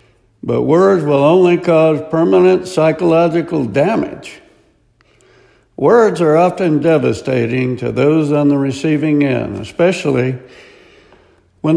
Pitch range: 135-175 Hz